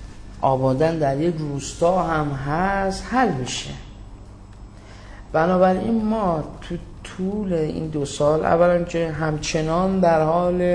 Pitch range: 125-170 Hz